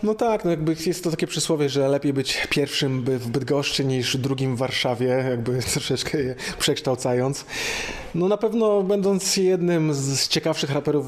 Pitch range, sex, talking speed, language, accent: 125-150 Hz, male, 160 wpm, Polish, native